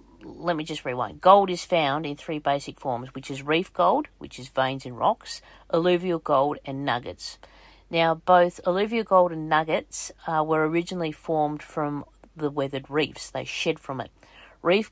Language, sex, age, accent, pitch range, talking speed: English, female, 40-59, Australian, 145-175 Hz, 175 wpm